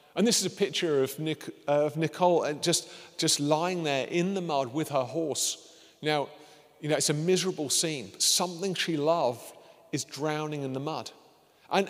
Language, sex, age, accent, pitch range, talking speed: English, male, 40-59, British, 155-190 Hz, 185 wpm